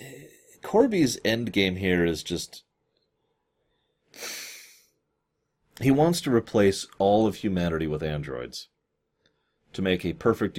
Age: 40-59